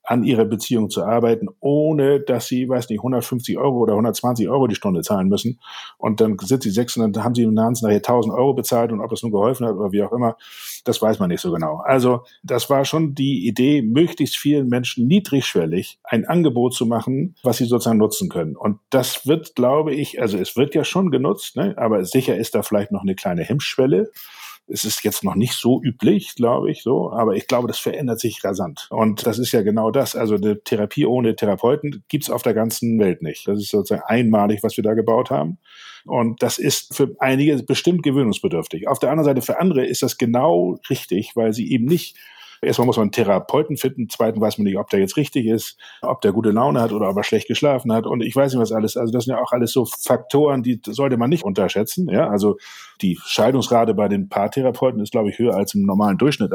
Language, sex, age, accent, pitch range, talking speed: German, male, 60-79, German, 110-140 Hz, 225 wpm